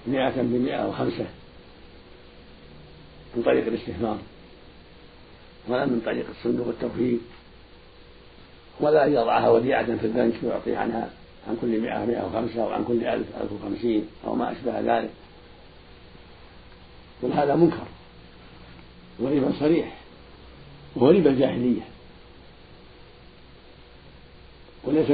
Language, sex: Arabic, male